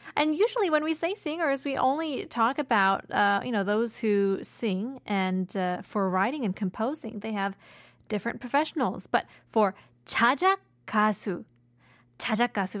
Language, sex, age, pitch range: Korean, female, 20-39, 195-275 Hz